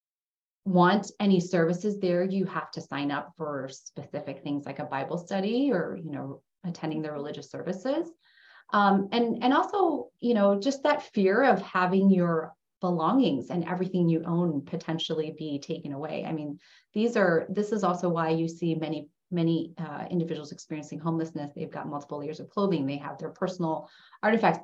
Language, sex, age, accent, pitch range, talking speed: English, female, 30-49, American, 160-195 Hz, 175 wpm